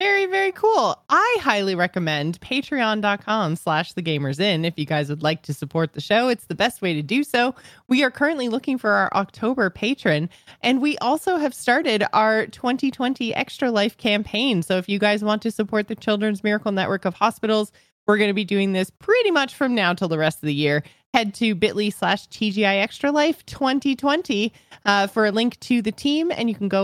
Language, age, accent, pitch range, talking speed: English, 20-39, American, 190-255 Hz, 205 wpm